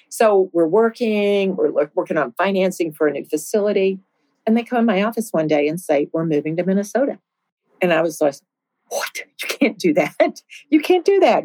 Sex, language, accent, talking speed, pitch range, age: female, English, American, 200 wpm, 155-210 Hz, 50-69